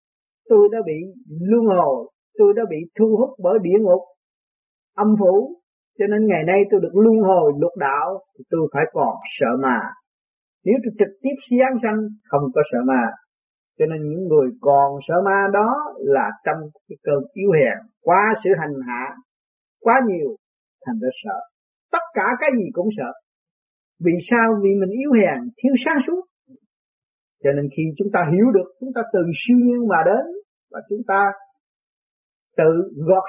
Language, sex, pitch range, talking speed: Vietnamese, male, 170-245 Hz, 175 wpm